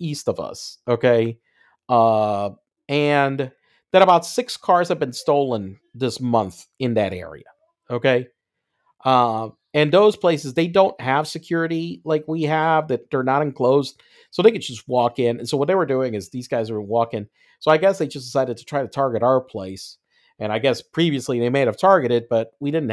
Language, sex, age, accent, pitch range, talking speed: English, male, 40-59, American, 125-175 Hz, 195 wpm